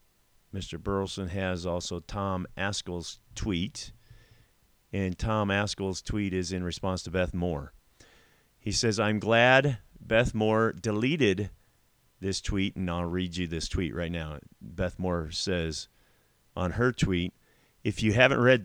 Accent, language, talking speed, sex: American, English, 140 wpm, male